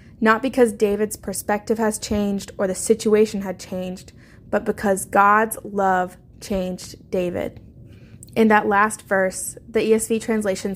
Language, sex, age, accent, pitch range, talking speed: English, female, 20-39, American, 190-225 Hz, 135 wpm